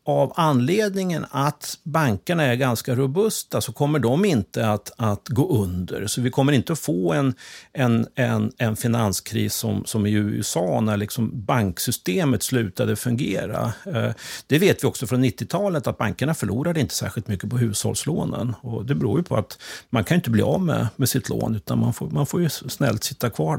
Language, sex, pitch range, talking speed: Swedish, male, 115-155 Hz, 185 wpm